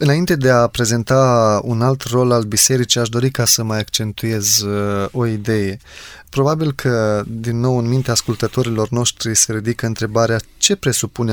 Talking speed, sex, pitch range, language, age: 160 wpm, male, 110-135 Hz, Romanian, 20-39